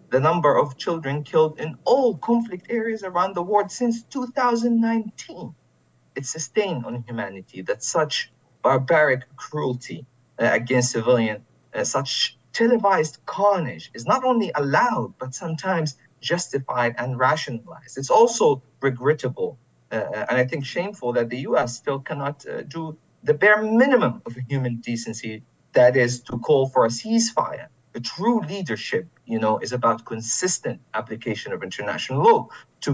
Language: English